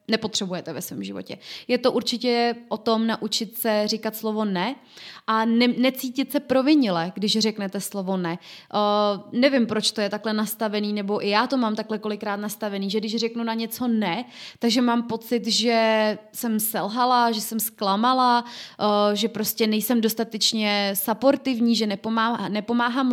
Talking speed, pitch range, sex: 150 wpm, 210-240 Hz, female